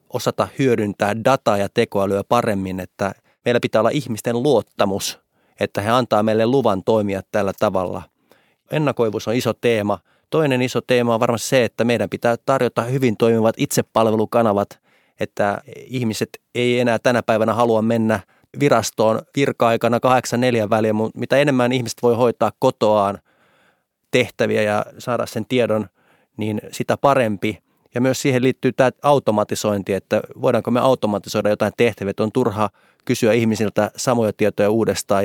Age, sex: 30-49, male